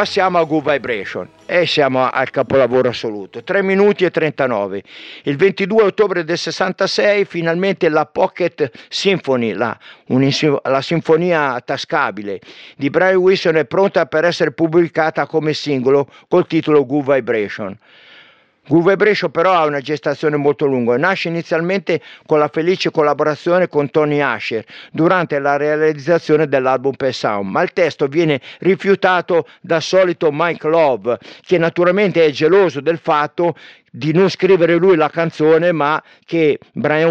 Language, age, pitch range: Italian, 50-69, 140-175 Hz